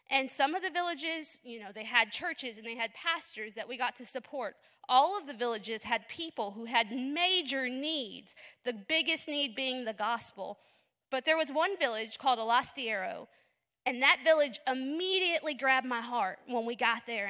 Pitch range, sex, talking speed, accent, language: 230-280 Hz, female, 185 wpm, American, English